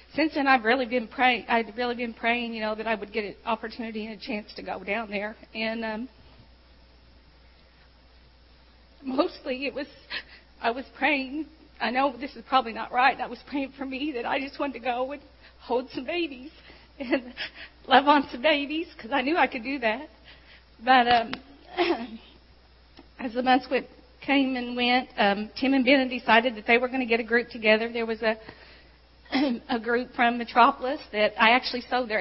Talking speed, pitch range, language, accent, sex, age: 190 wpm, 225-265 Hz, English, American, female, 40-59